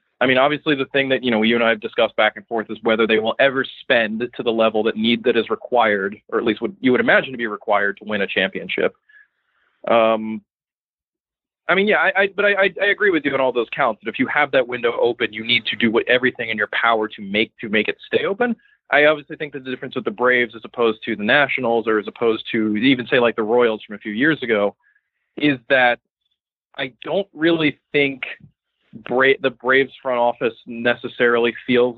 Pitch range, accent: 115-165 Hz, American